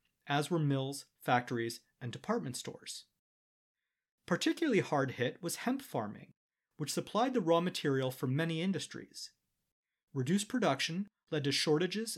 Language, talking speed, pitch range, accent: English, 130 wpm, 125-190 Hz, American